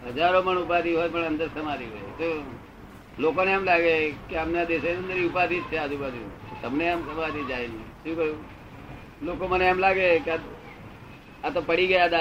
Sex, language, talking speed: male, Gujarati, 55 wpm